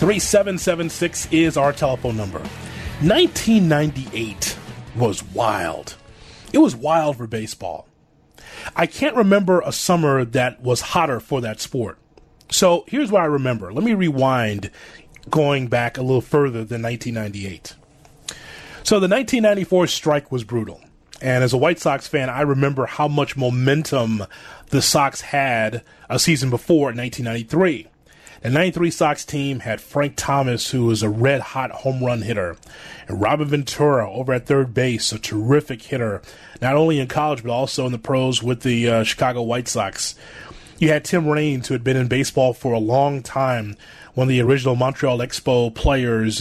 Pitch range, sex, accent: 120-150 Hz, male, American